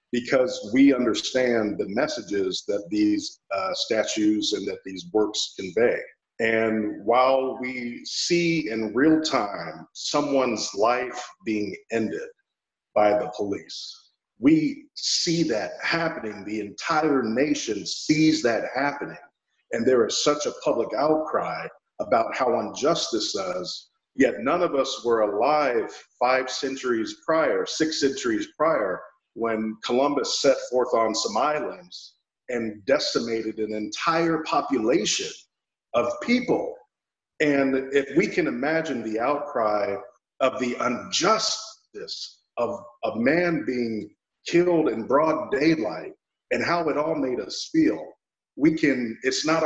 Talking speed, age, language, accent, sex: 125 wpm, 50-69, English, American, male